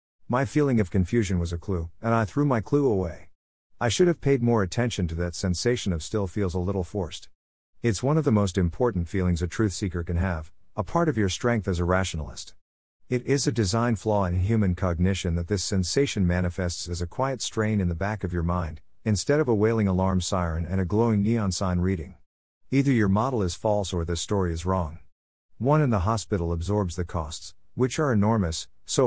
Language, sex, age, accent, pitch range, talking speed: English, male, 50-69, American, 90-115 Hz, 215 wpm